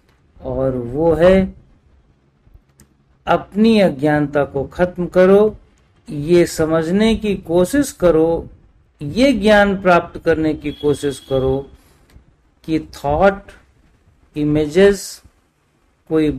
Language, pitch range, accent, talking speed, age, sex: Hindi, 125-180 Hz, native, 90 wpm, 50-69, male